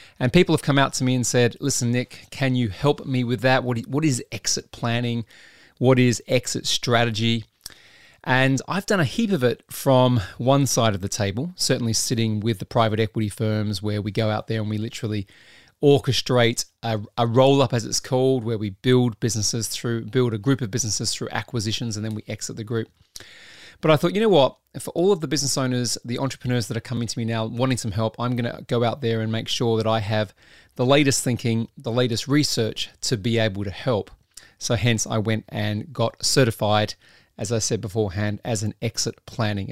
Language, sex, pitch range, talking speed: English, male, 110-130 Hz, 210 wpm